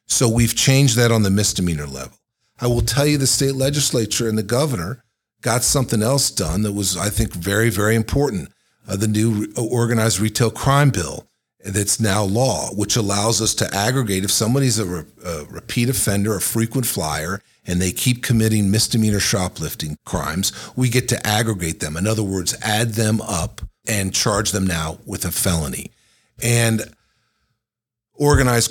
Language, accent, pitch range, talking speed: English, American, 95-115 Hz, 170 wpm